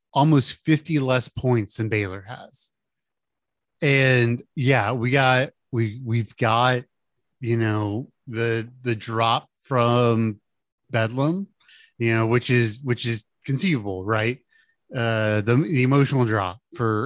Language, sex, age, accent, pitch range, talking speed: English, male, 30-49, American, 115-150 Hz, 125 wpm